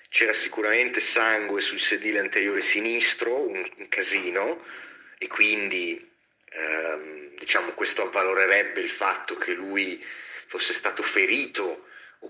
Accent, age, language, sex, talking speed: native, 30-49, Italian, male, 110 wpm